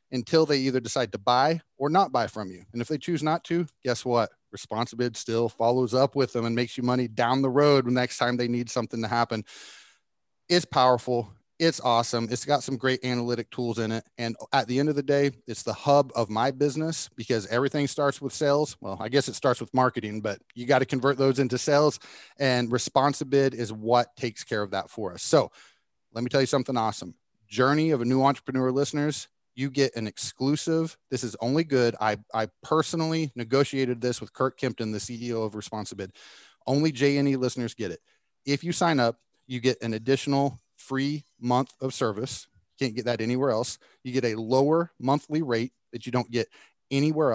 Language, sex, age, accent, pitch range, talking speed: English, male, 30-49, American, 115-140 Hz, 205 wpm